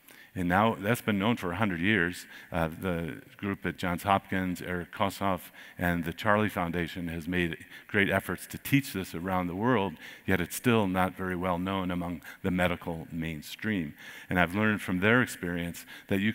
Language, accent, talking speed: English, American, 180 wpm